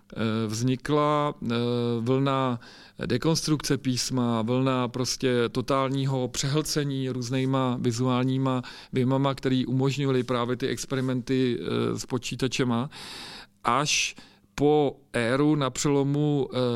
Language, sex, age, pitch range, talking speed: Czech, male, 40-59, 120-140 Hz, 80 wpm